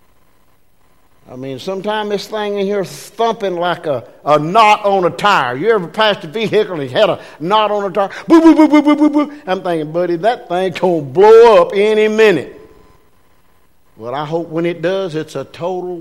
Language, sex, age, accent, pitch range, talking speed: English, male, 60-79, American, 165-225 Hz, 210 wpm